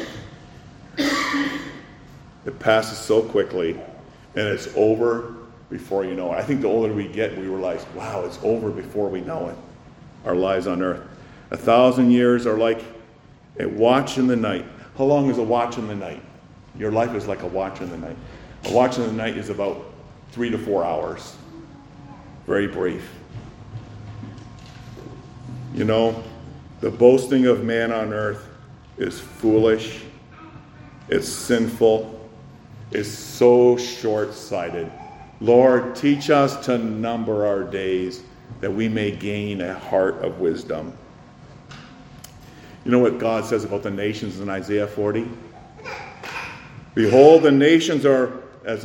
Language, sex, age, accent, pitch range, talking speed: English, male, 50-69, American, 110-135 Hz, 145 wpm